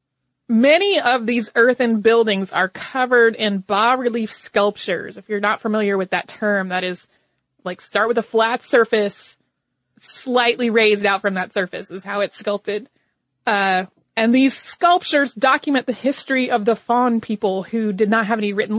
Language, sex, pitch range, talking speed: English, female, 205-245 Hz, 165 wpm